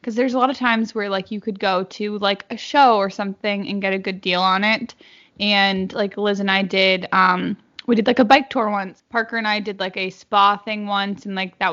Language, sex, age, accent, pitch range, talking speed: English, female, 10-29, American, 200-230 Hz, 255 wpm